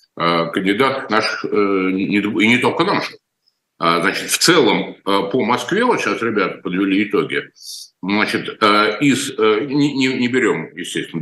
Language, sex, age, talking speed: Russian, male, 50-69, 120 wpm